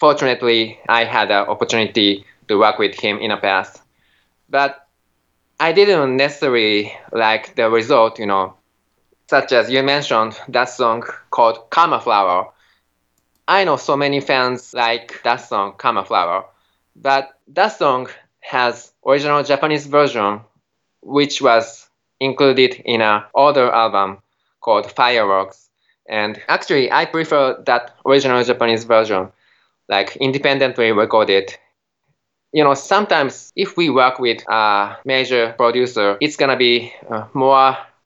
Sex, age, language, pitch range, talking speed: male, 20-39, English, 105-135 Hz, 130 wpm